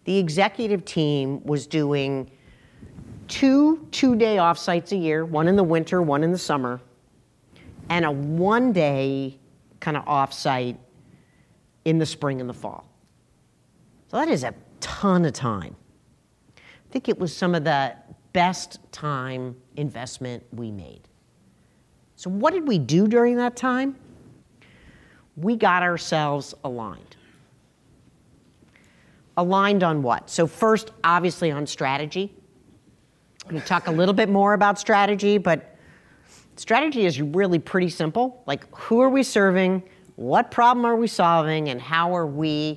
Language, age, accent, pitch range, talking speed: English, 50-69, American, 140-195 Hz, 140 wpm